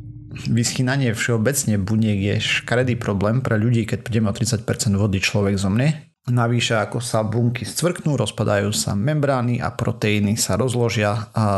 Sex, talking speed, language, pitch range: male, 150 wpm, Slovak, 105-120 Hz